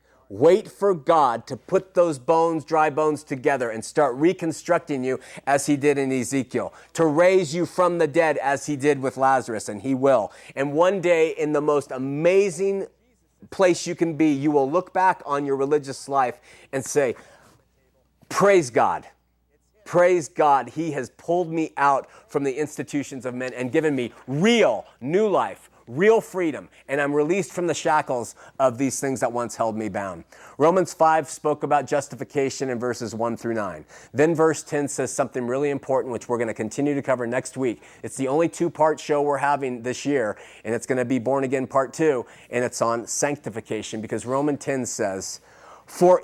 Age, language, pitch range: 30-49, English, 130-165 Hz